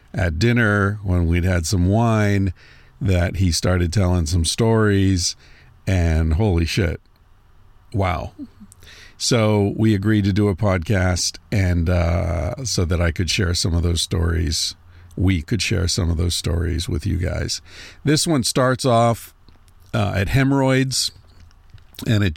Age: 50-69